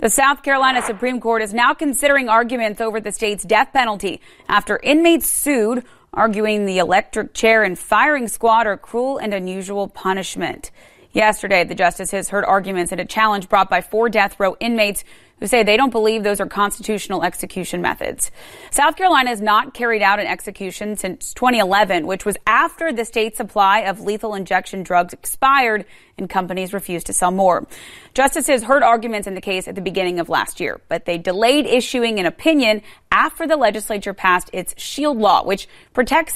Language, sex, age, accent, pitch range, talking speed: English, female, 30-49, American, 190-245 Hz, 175 wpm